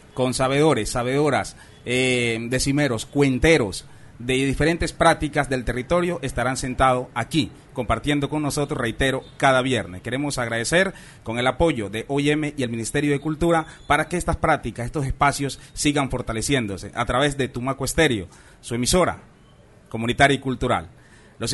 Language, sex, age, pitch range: Spanish, male, 30-49, 130-180 Hz